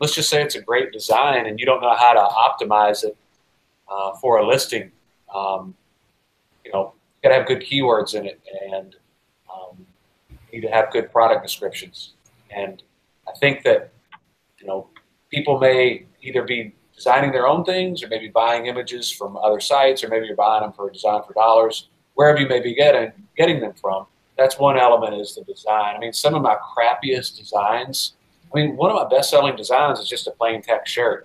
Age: 40-59